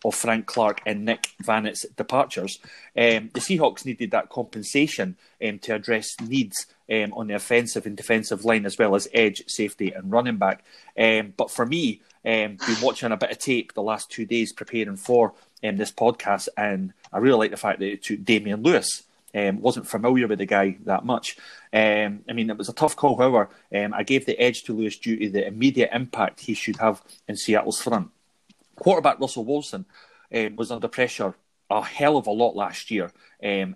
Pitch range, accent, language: 105-120 Hz, British, English